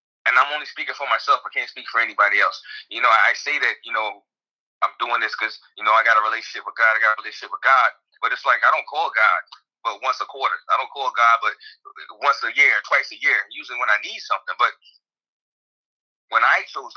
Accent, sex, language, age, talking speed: American, male, English, 30-49, 240 wpm